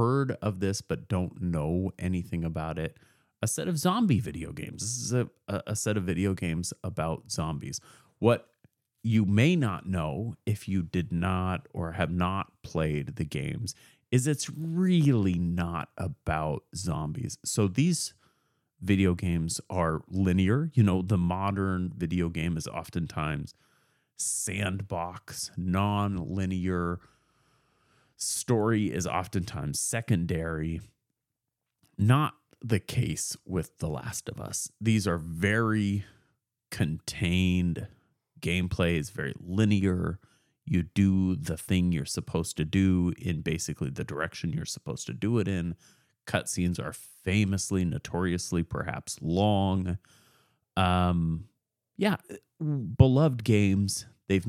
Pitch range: 90-115 Hz